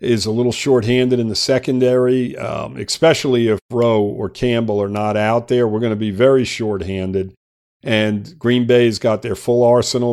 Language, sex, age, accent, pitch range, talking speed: English, male, 50-69, American, 110-125 Hz, 170 wpm